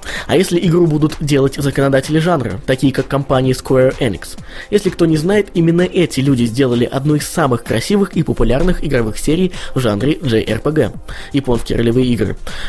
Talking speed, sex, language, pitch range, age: 160 wpm, male, Russian, 125-170 Hz, 20-39